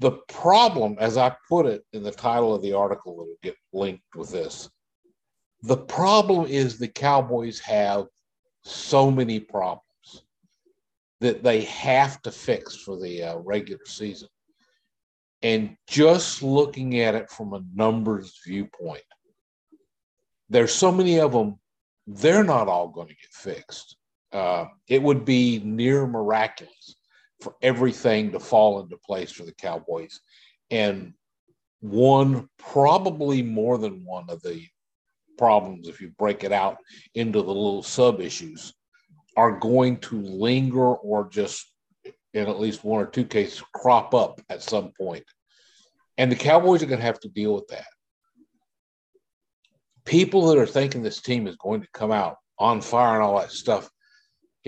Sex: male